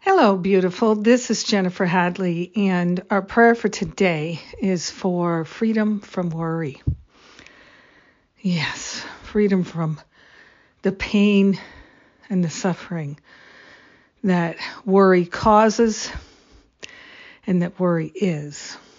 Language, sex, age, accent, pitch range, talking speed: English, female, 50-69, American, 165-195 Hz, 100 wpm